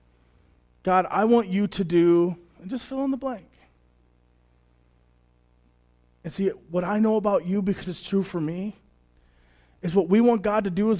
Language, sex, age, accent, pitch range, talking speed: English, male, 30-49, American, 130-220 Hz, 175 wpm